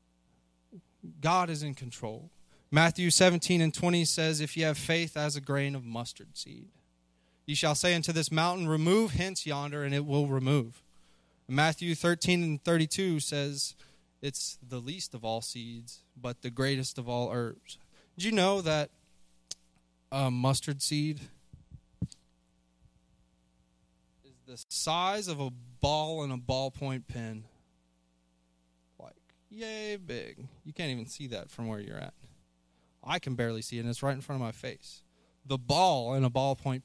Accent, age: American, 20-39